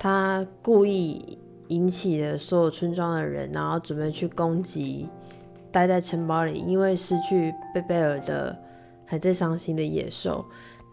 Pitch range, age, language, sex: 160-195 Hz, 20-39, Chinese, female